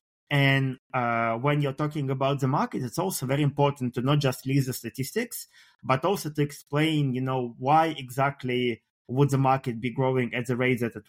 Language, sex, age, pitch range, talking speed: English, male, 20-39, 115-140 Hz, 195 wpm